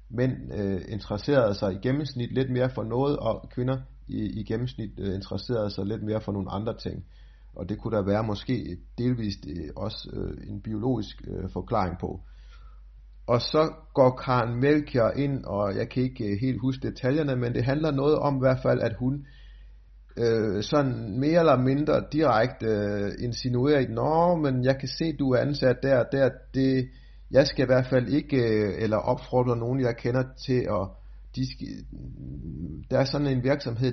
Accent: native